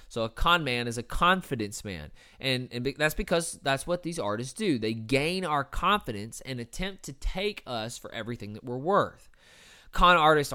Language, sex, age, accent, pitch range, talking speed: English, male, 20-39, American, 110-155 Hz, 190 wpm